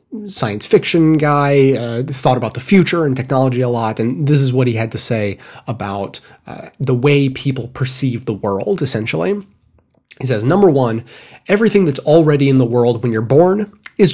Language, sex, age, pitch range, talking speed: English, male, 30-49, 120-155 Hz, 185 wpm